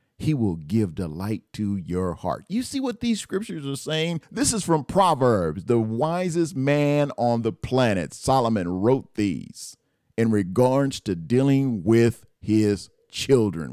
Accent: American